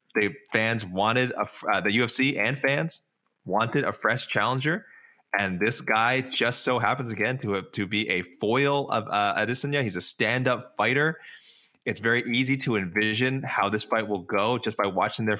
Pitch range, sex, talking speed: 100-125 Hz, male, 185 wpm